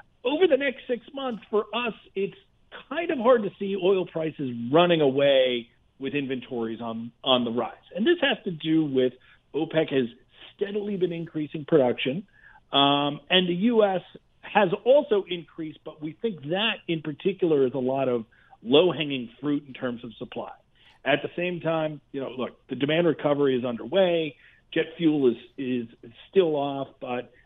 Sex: male